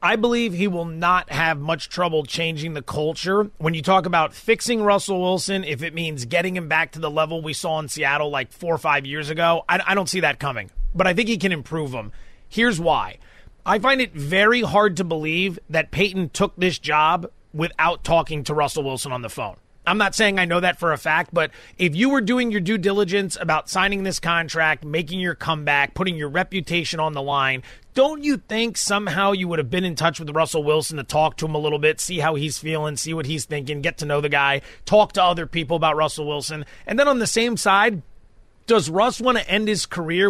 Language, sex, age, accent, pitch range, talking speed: English, male, 30-49, American, 155-215 Hz, 230 wpm